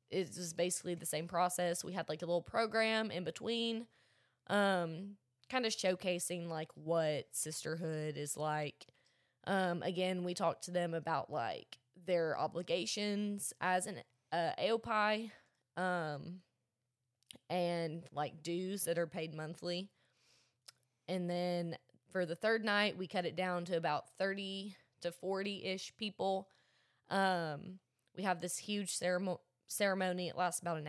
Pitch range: 160-185 Hz